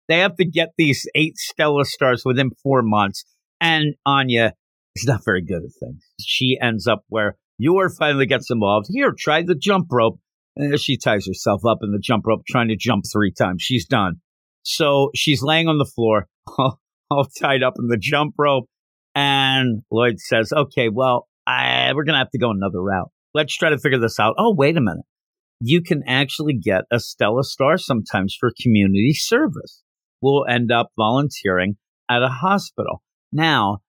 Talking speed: 185 wpm